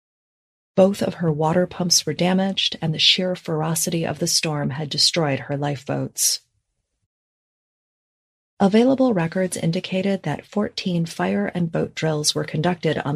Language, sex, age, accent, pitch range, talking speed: English, female, 30-49, American, 155-180 Hz, 135 wpm